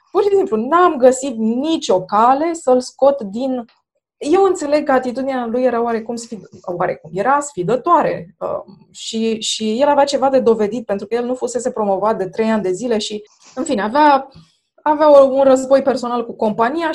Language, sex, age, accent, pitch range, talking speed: Romanian, female, 20-39, native, 205-260 Hz, 165 wpm